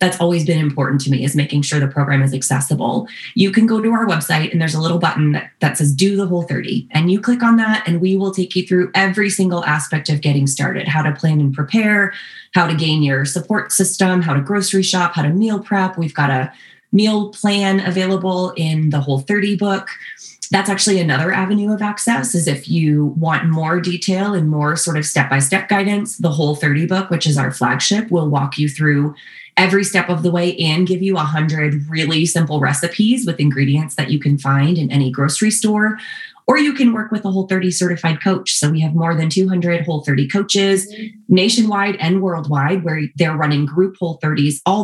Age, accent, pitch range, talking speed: 20-39, American, 150-195 Hz, 210 wpm